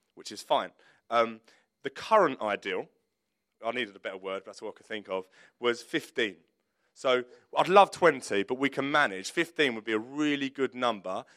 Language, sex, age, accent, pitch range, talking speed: English, male, 30-49, British, 110-140 Hz, 190 wpm